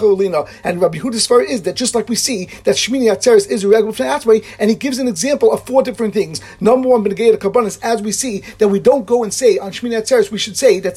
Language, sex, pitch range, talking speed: English, male, 205-255 Hz, 235 wpm